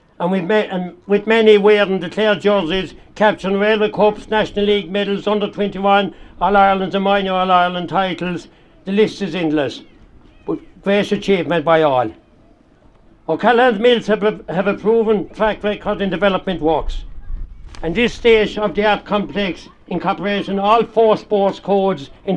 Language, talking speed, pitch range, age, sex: English, 140 wpm, 185-210 Hz, 60-79, male